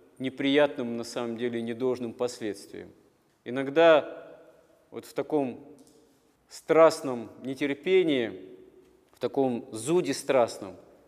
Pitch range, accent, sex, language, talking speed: 130-155 Hz, native, male, Russian, 85 wpm